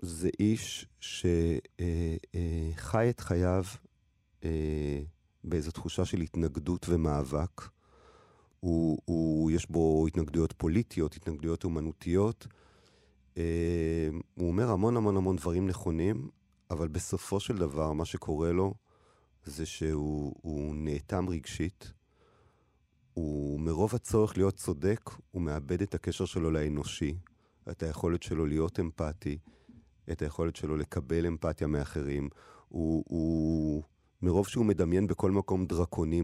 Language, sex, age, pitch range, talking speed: Hebrew, male, 40-59, 80-95 Hz, 115 wpm